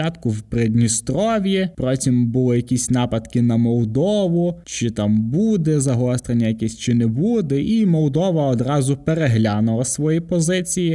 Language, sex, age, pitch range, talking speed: Ukrainian, male, 20-39, 115-155 Hz, 120 wpm